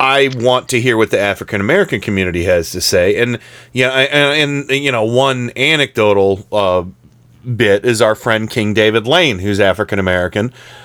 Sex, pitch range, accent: male, 110-130 Hz, American